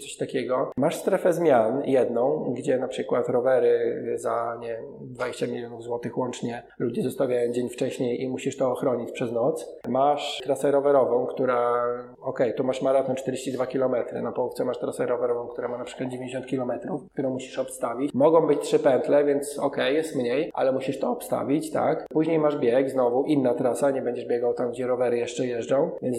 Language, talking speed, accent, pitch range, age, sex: Polish, 180 wpm, native, 125-155 Hz, 20-39, male